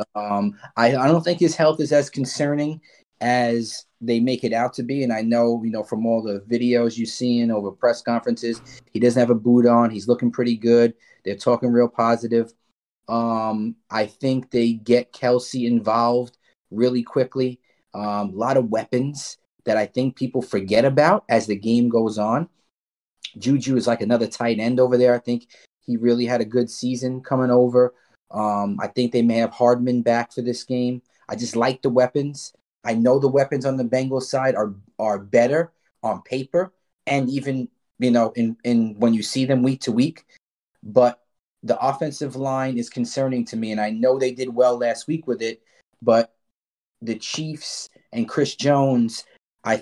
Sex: male